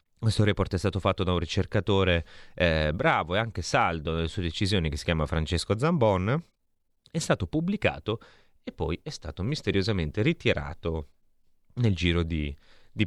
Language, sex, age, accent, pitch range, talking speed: Italian, male, 30-49, native, 80-100 Hz, 155 wpm